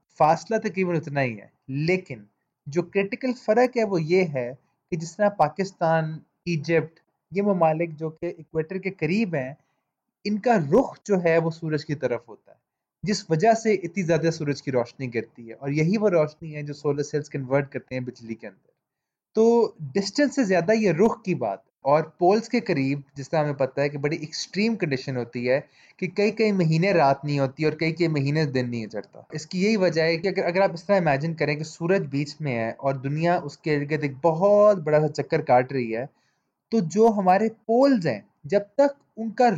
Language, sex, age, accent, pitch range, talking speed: Hindi, male, 20-39, native, 145-205 Hz, 195 wpm